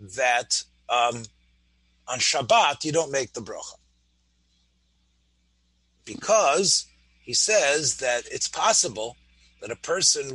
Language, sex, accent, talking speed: English, male, American, 105 wpm